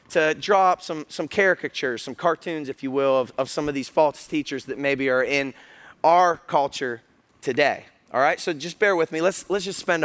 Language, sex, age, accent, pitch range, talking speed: English, male, 30-49, American, 145-210 Hz, 215 wpm